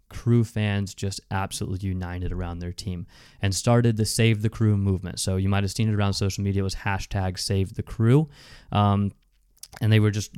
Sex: male